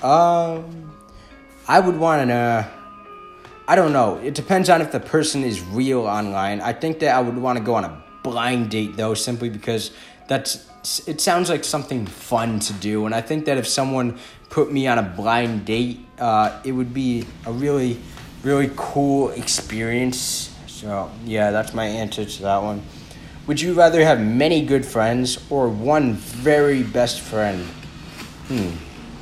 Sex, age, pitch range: male, 20-39, 110-140 Hz